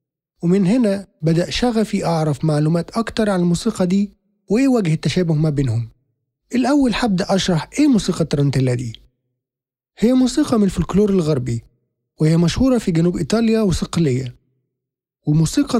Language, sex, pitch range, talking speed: Arabic, male, 150-195 Hz, 130 wpm